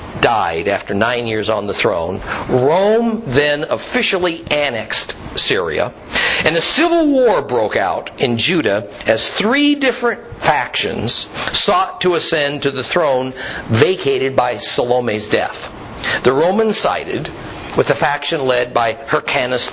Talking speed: 130 wpm